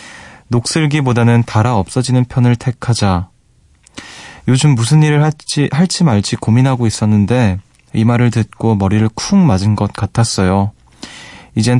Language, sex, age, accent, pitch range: Korean, male, 20-39, native, 100-125 Hz